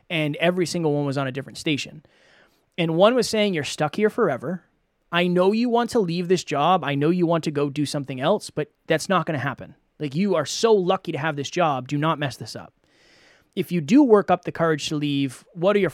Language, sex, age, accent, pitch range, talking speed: English, male, 20-39, American, 145-190 Hz, 250 wpm